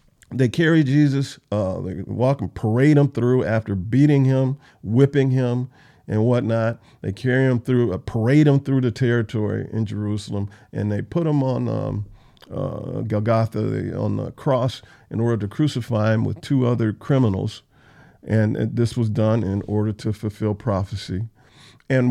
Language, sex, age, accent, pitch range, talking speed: English, male, 50-69, American, 105-130 Hz, 155 wpm